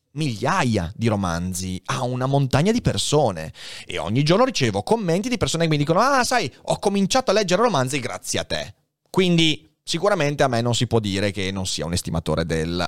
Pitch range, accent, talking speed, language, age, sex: 110-170 Hz, native, 195 wpm, Italian, 30-49, male